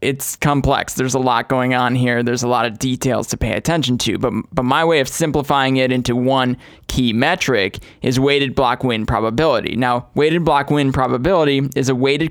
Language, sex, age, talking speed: English, male, 20-39, 200 wpm